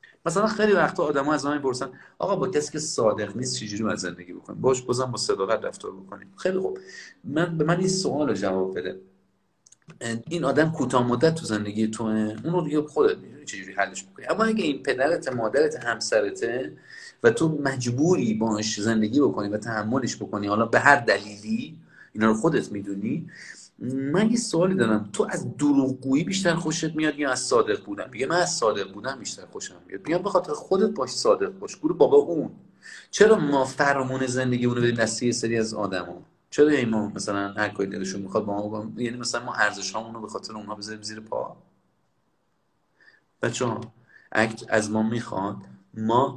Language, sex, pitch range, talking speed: Persian, male, 105-150 Hz, 170 wpm